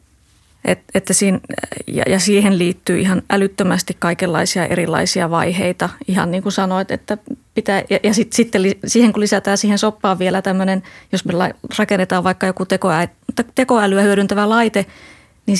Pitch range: 180-205 Hz